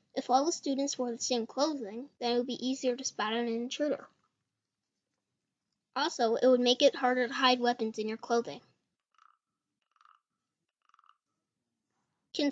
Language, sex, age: English, female, 10-29